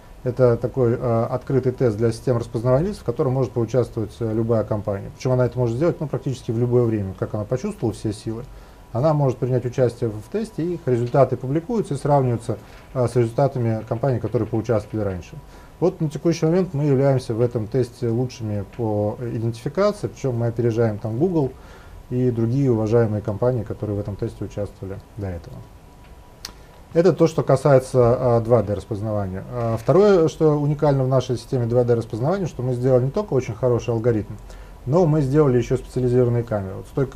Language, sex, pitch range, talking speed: Russian, male, 115-135 Hz, 170 wpm